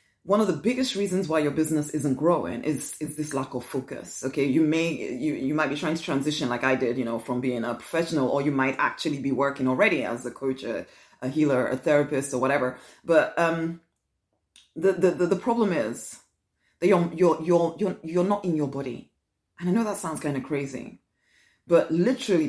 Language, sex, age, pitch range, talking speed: English, female, 30-49, 145-215 Hz, 210 wpm